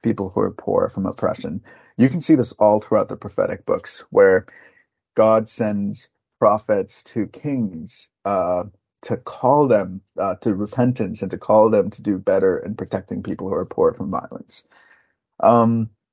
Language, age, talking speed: English, 30-49, 165 wpm